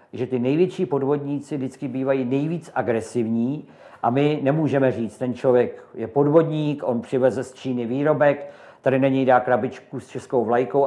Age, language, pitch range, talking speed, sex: 50-69, Czech, 125-155 Hz, 160 wpm, male